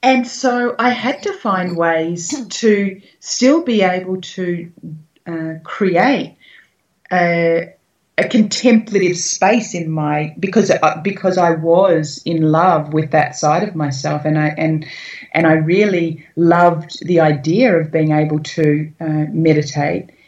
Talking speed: 140 wpm